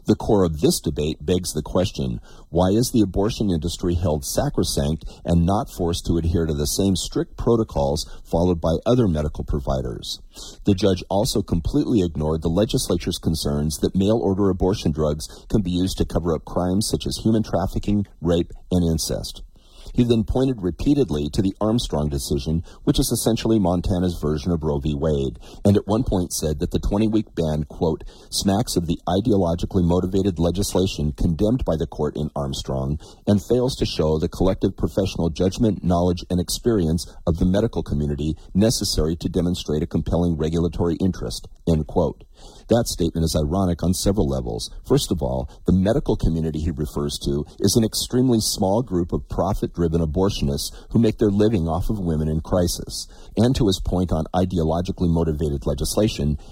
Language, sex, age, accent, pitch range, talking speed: English, male, 50-69, American, 80-100 Hz, 170 wpm